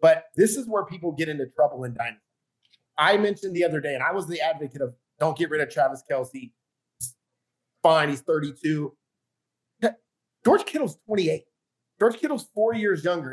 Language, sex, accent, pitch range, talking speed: English, male, American, 145-215 Hz, 170 wpm